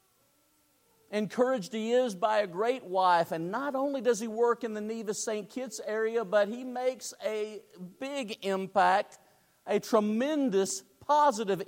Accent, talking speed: American, 145 wpm